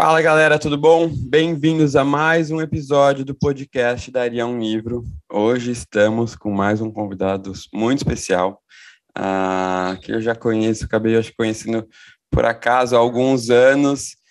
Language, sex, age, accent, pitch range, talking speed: Portuguese, male, 20-39, Brazilian, 105-125 Hz, 145 wpm